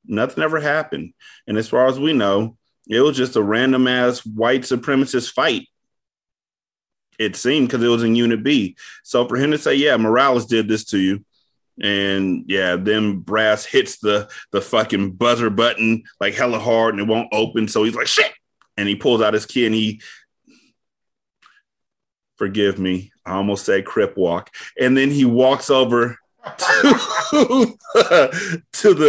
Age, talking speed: 30-49, 165 wpm